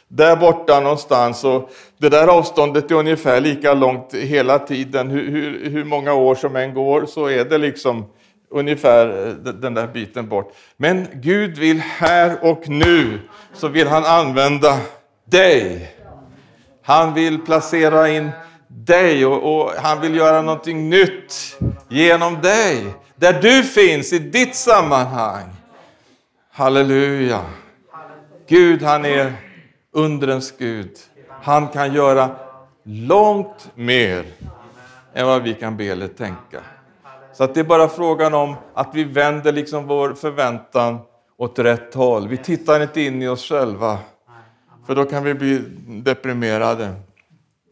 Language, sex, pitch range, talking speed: Swedish, male, 125-155 Hz, 135 wpm